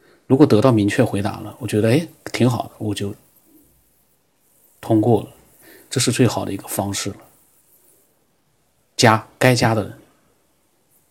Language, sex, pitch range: Chinese, male, 105-120 Hz